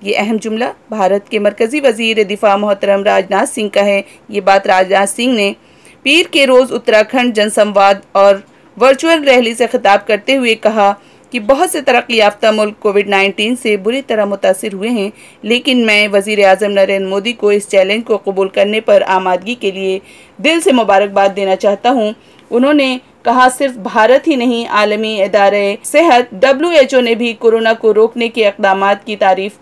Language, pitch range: Hindi, 200-240 Hz